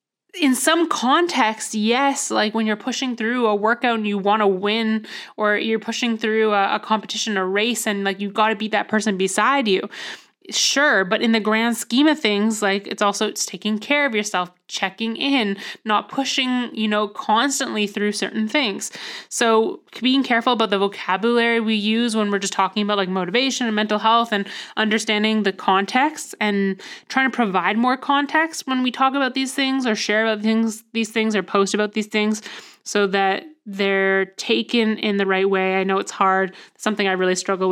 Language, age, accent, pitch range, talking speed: English, 20-39, American, 200-235 Hz, 195 wpm